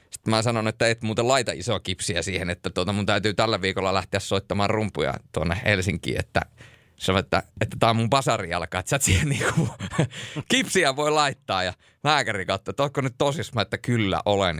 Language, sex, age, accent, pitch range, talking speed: Finnish, male, 30-49, native, 95-125 Hz, 185 wpm